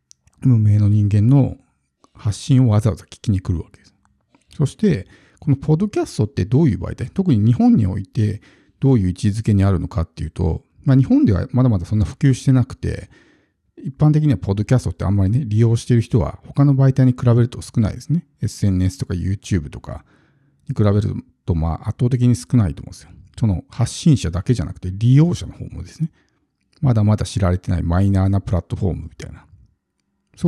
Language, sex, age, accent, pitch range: Japanese, male, 50-69, native, 95-130 Hz